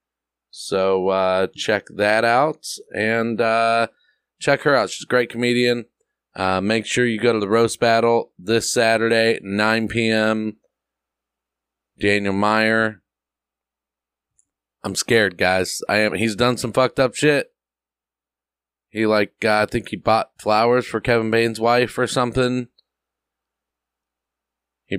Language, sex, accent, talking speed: English, male, American, 130 wpm